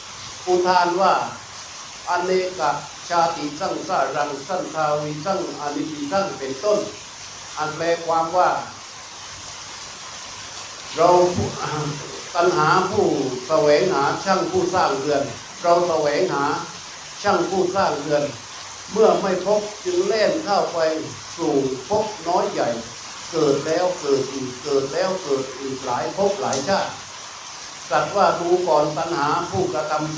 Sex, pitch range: male, 145-185 Hz